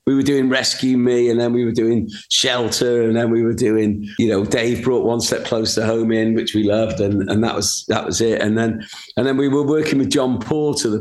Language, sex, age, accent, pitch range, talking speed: English, male, 40-59, British, 110-130 Hz, 250 wpm